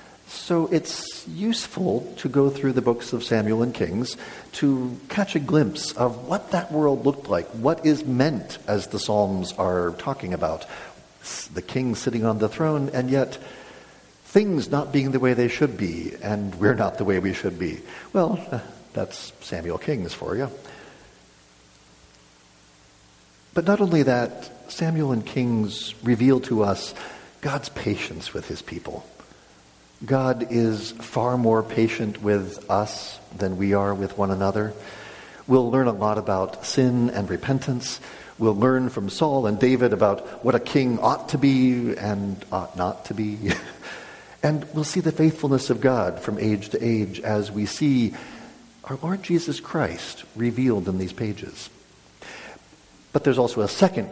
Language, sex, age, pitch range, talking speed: English, male, 50-69, 100-140 Hz, 155 wpm